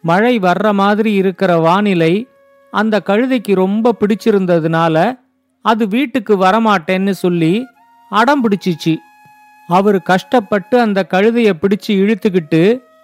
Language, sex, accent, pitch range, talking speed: Tamil, male, native, 185-240 Hz, 90 wpm